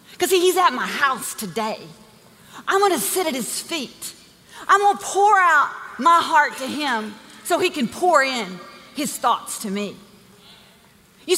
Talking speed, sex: 160 wpm, female